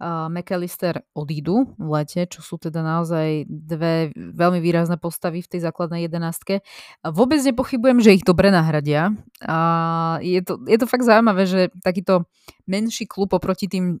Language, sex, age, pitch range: Slovak, female, 20-39, 165-190 Hz